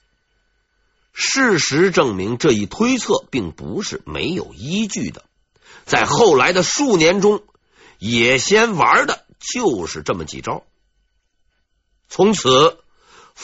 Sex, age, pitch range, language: male, 50-69, 150-245 Hz, Chinese